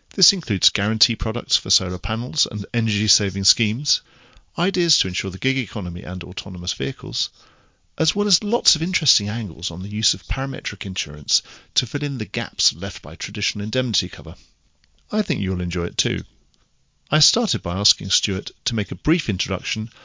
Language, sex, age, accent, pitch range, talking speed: English, male, 40-59, British, 95-125 Hz, 175 wpm